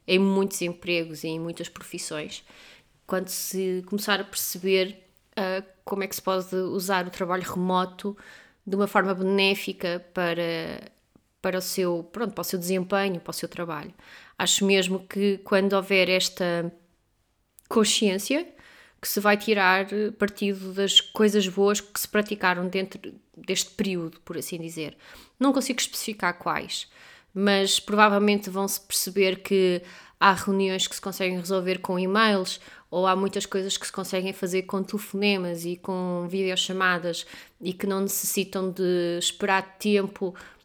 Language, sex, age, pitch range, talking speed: Portuguese, female, 20-39, 180-200 Hz, 150 wpm